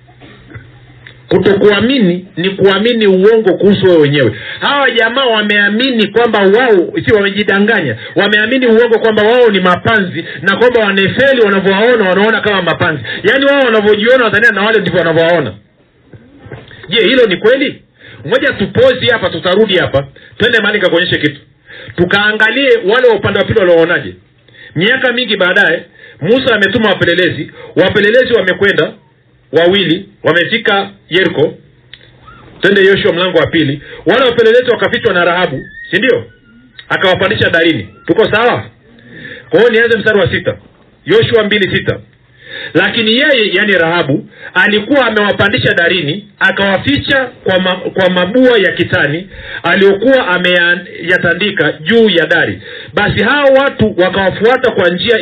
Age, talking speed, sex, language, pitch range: 50-69, 125 wpm, male, Swahili, 175-235 Hz